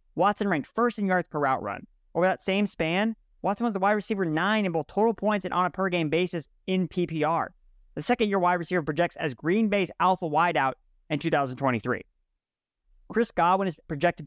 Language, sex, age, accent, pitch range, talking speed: English, male, 20-39, American, 155-200 Hz, 190 wpm